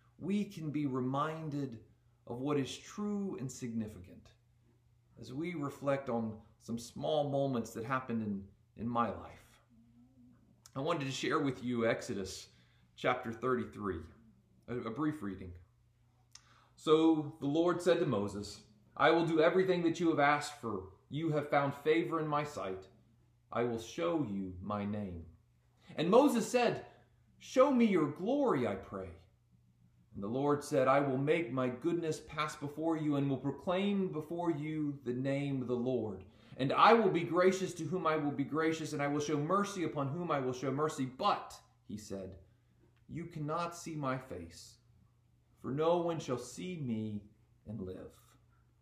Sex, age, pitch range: male, 40-59, 115-155 Hz